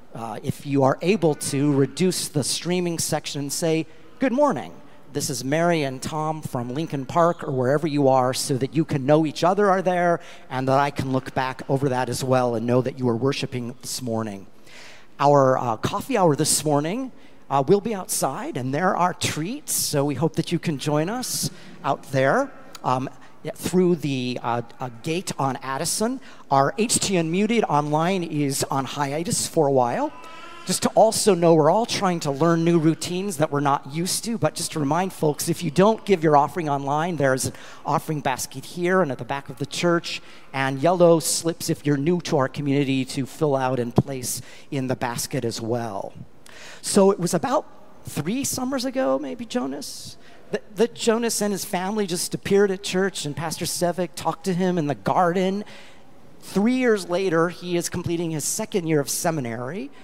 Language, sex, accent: English, male, American